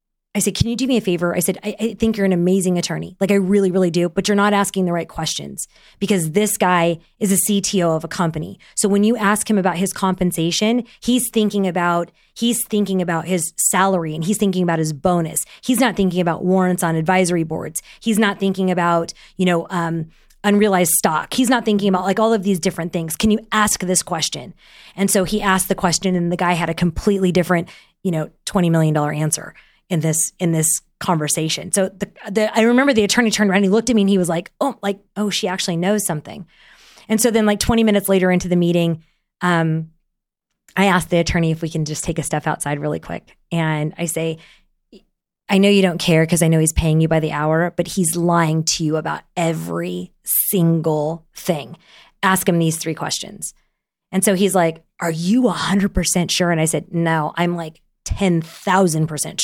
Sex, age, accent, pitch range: female, 20-39, American, 165-200 Hz